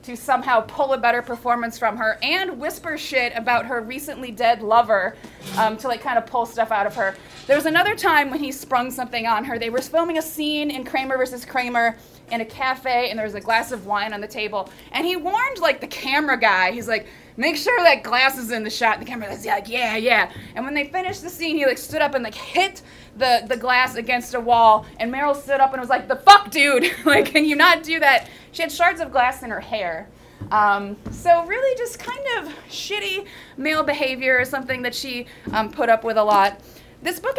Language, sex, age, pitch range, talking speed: English, female, 20-39, 230-310 Hz, 235 wpm